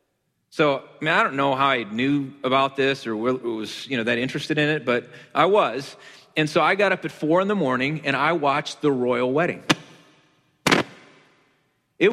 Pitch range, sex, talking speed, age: 140-190 Hz, male, 190 wpm, 30-49